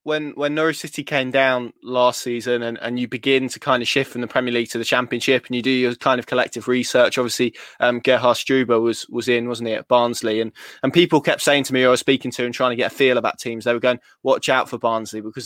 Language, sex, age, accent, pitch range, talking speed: English, male, 20-39, British, 120-140 Hz, 270 wpm